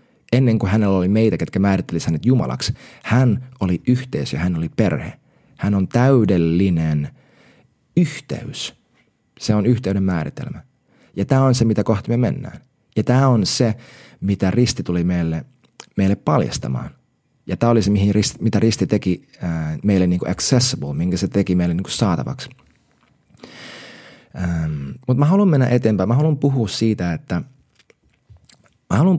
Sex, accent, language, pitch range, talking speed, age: male, native, Finnish, 90-130 Hz, 150 wpm, 30-49